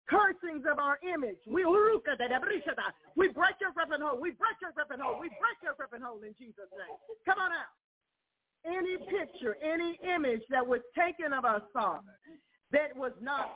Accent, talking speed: American, 175 wpm